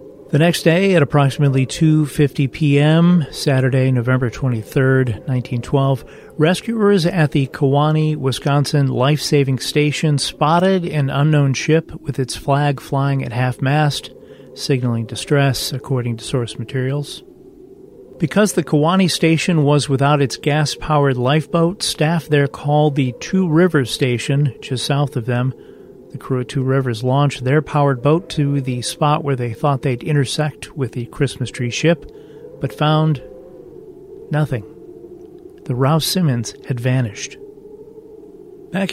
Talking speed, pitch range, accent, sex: 130 wpm, 135-165 Hz, American, male